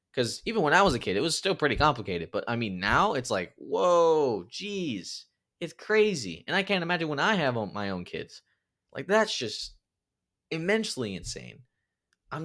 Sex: male